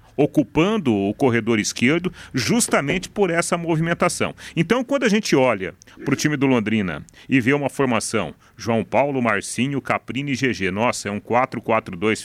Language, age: Portuguese, 40-59